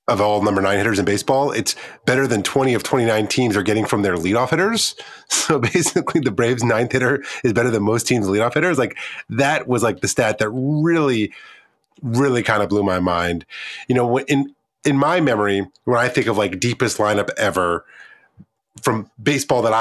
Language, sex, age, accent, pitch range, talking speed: English, male, 30-49, American, 105-130 Hz, 195 wpm